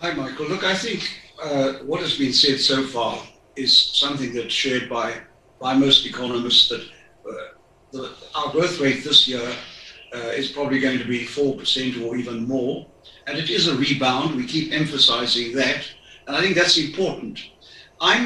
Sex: male